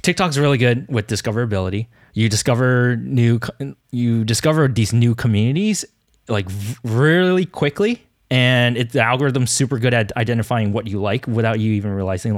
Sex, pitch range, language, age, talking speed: male, 110-150 Hz, English, 20-39, 155 wpm